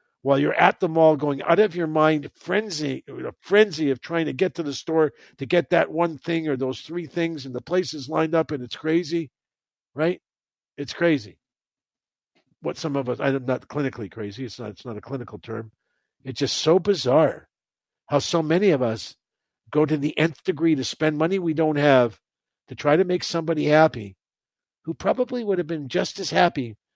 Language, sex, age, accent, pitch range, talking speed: English, male, 50-69, American, 130-175 Hz, 200 wpm